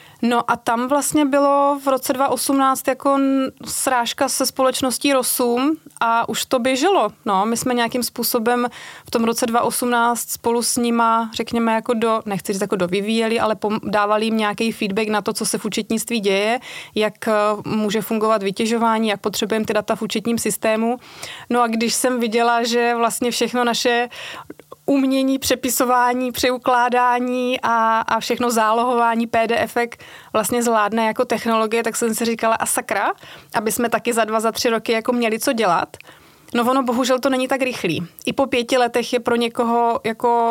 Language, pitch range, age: Czech, 225-250 Hz, 30-49